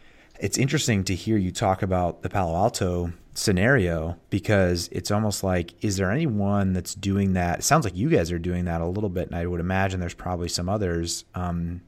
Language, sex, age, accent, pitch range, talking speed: English, male, 30-49, American, 90-110 Hz, 205 wpm